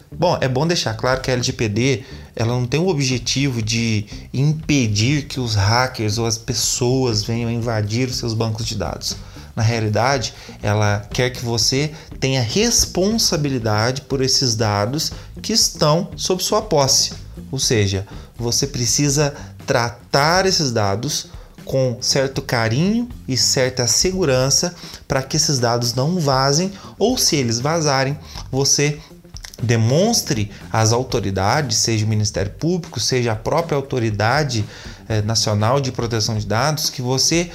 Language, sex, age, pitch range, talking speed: Portuguese, male, 30-49, 115-150 Hz, 135 wpm